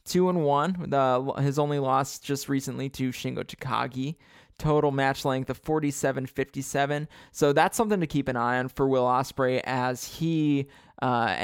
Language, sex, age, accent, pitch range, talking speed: English, male, 20-39, American, 125-145 Hz, 170 wpm